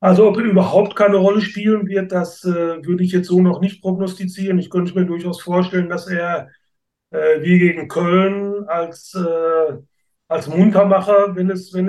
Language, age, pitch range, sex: German, 30-49, 170-195 Hz, male